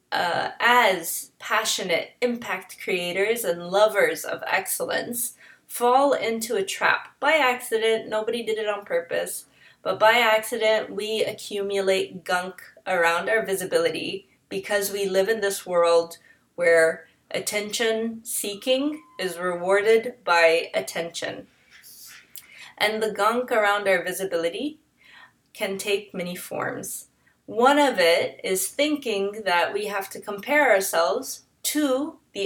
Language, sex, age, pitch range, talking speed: English, female, 20-39, 190-235 Hz, 120 wpm